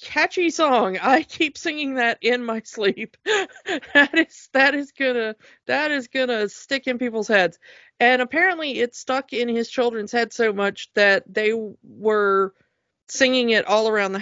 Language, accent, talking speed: English, American, 165 wpm